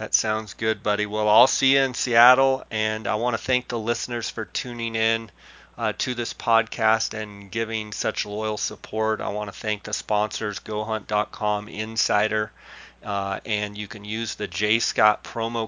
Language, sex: English, male